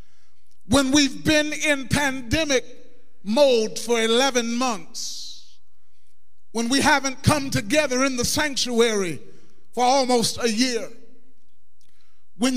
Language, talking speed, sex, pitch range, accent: English, 105 wpm, male, 215-270 Hz, American